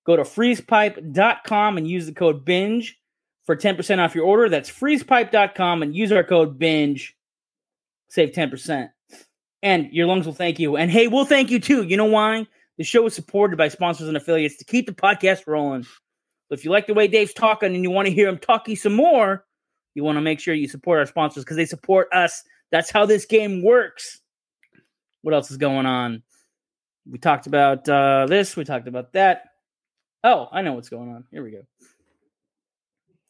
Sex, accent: male, American